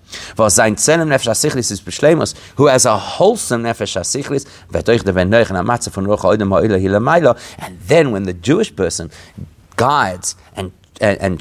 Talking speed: 75 wpm